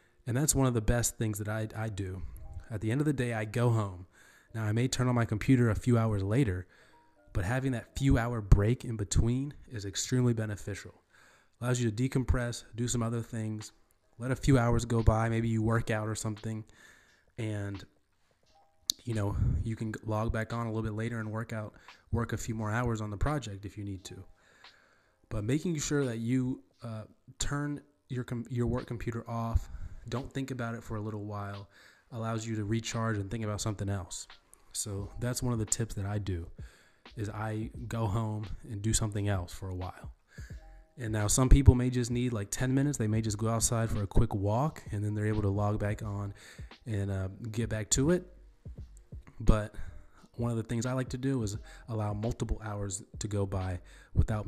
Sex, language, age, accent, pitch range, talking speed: male, English, 20-39, American, 100-120 Hz, 205 wpm